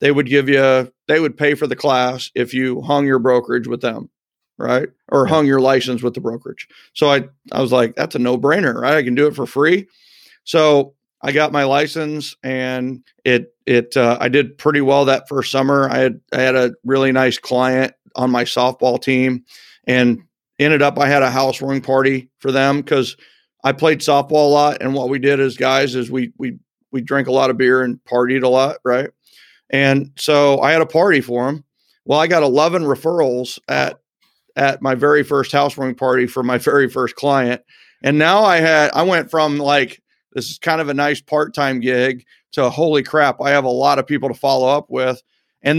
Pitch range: 130-150 Hz